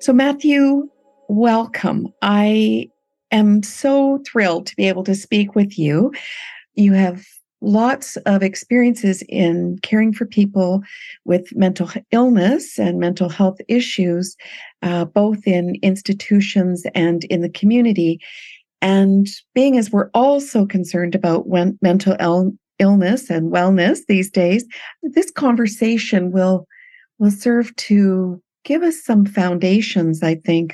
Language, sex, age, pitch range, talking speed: English, female, 50-69, 175-235 Hz, 125 wpm